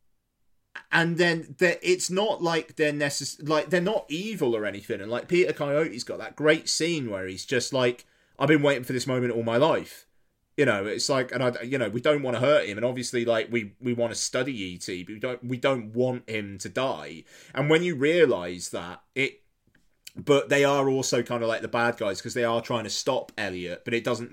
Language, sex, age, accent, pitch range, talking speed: English, male, 30-49, British, 115-145 Hz, 225 wpm